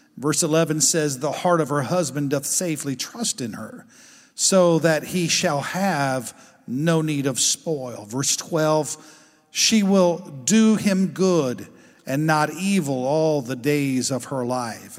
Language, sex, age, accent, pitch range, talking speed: English, male, 50-69, American, 135-175 Hz, 150 wpm